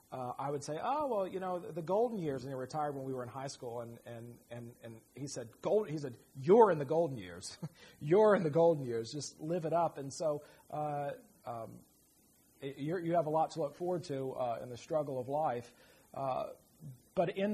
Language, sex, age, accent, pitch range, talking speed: English, male, 40-59, American, 130-165 Hz, 225 wpm